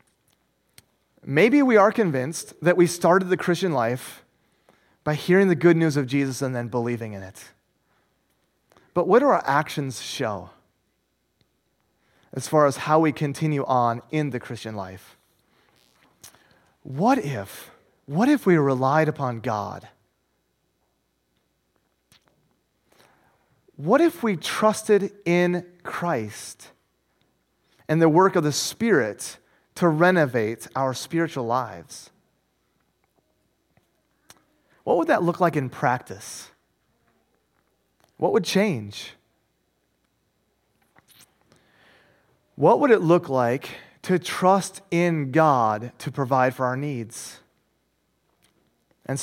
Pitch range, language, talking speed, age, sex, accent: 120-180 Hz, English, 110 wpm, 30-49, male, American